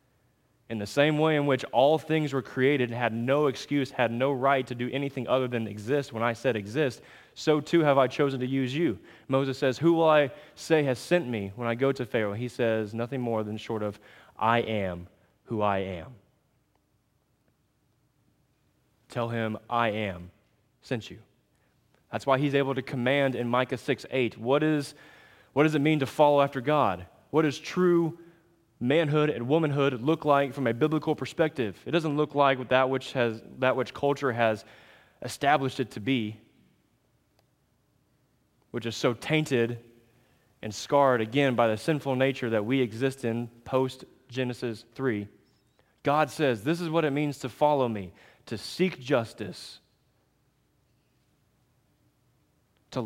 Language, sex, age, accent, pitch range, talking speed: English, male, 20-39, American, 115-145 Hz, 165 wpm